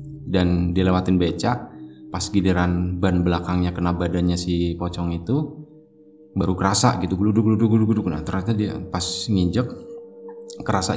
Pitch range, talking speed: 90-110 Hz, 135 wpm